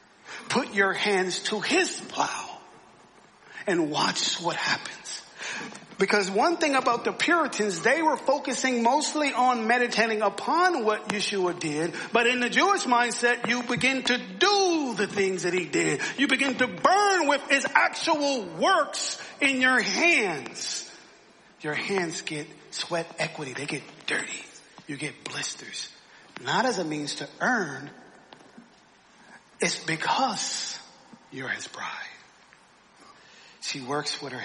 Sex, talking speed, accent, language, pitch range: male, 135 wpm, American, English, 150-255 Hz